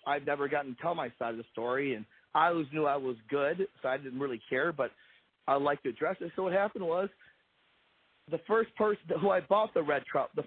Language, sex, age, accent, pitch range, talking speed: English, male, 40-59, American, 135-170 Hz, 240 wpm